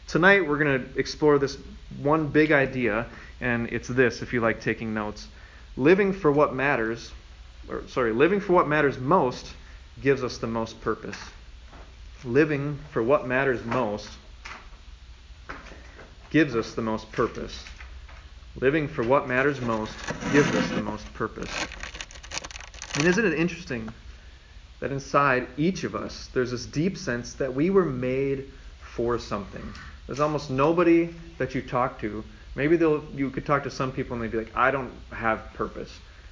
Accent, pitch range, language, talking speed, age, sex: American, 110-150 Hz, English, 155 wpm, 30-49, male